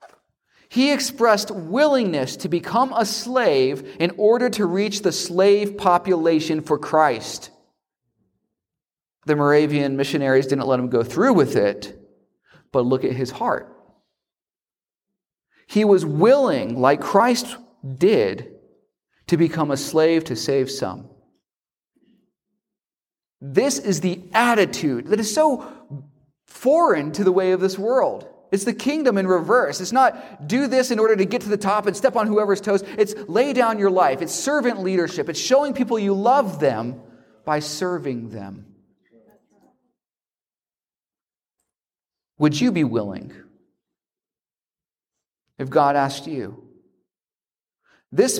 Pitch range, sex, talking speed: 140-215 Hz, male, 130 wpm